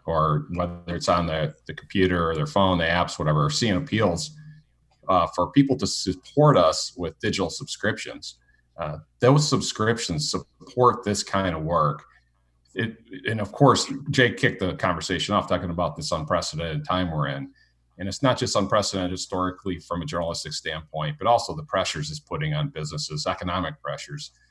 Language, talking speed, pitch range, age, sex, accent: English, 165 wpm, 85-110 Hz, 40-59, male, American